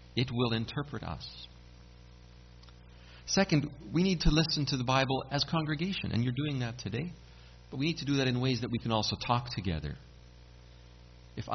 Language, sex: English, male